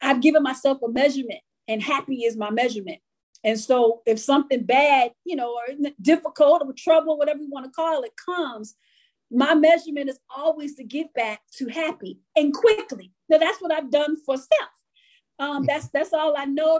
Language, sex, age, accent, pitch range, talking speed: English, female, 40-59, American, 265-345 Hz, 180 wpm